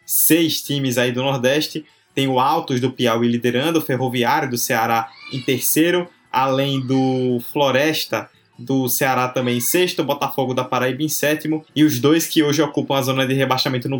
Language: Portuguese